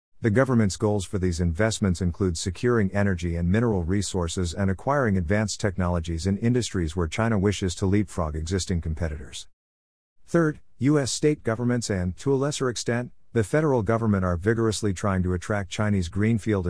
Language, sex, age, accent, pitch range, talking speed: English, male, 50-69, American, 90-110 Hz, 160 wpm